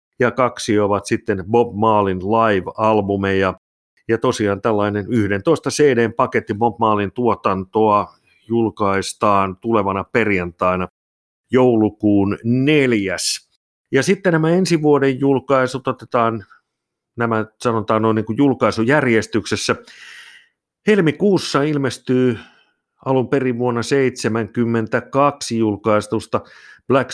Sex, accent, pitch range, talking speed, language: male, native, 105-125 Hz, 90 wpm, Finnish